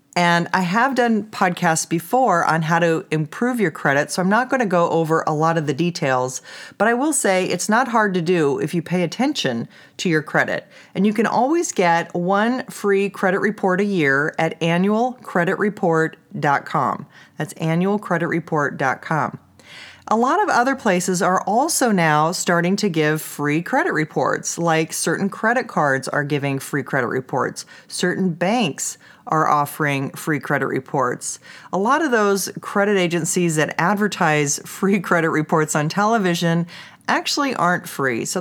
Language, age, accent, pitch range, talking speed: English, 40-59, American, 160-205 Hz, 160 wpm